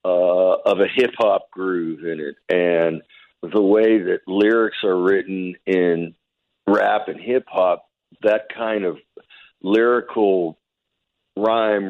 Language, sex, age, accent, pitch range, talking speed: English, male, 60-79, American, 95-125 Hz, 115 wpm